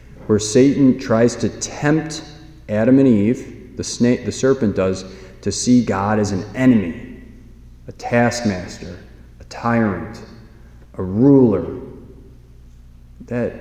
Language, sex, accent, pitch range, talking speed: English, male, American, 90-110 Hz, 115 wpm